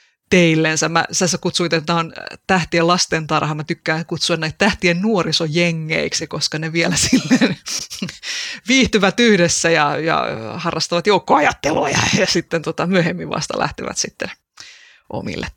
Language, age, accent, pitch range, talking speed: Finnish, 30-49, native, 160-195 Hz, 125 wpm